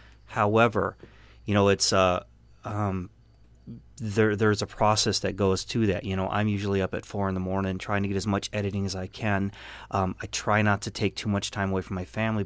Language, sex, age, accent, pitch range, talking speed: English, male, 30-49, American, 100-115 Hz, 220 wpm